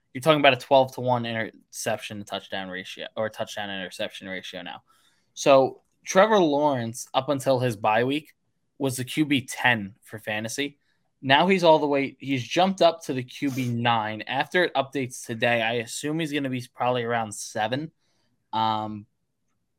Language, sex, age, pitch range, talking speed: English, male, 10-29, 115-135 Hz, 170 wpm